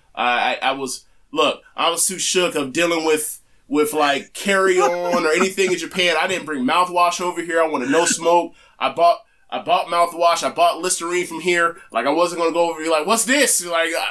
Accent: American